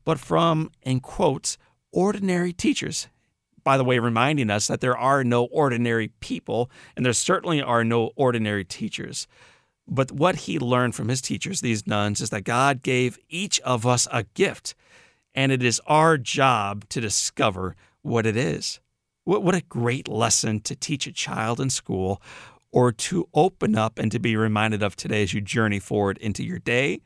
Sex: male